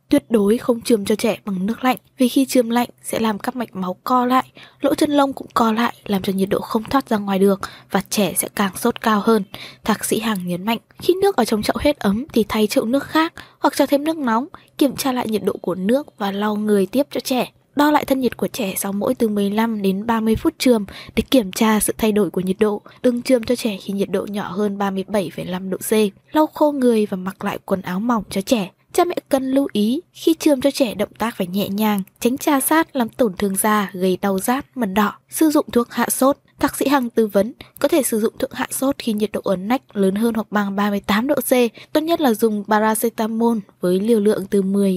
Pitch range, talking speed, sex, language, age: 200-260 Hz, 250 wpm, female, Vietnamese, 20-39